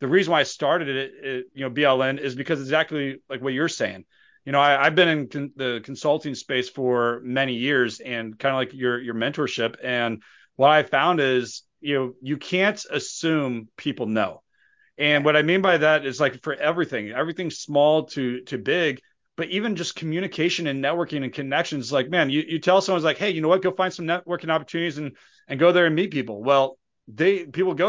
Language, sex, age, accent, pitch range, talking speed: English, male, 30-49, American, 130-165 Hz, 215 wpm